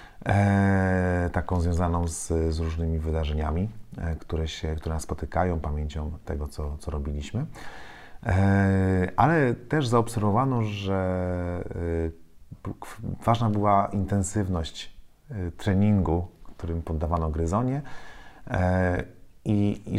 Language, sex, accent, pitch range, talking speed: Polish, male, native, 85-110 Hz, 85 wpm